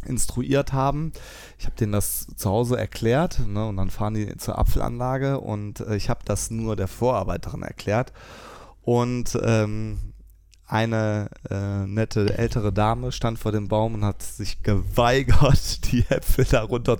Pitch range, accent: 105-130 Hz, German